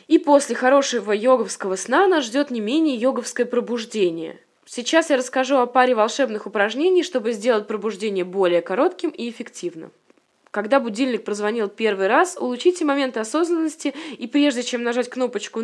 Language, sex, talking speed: Russian, female, 145 wpm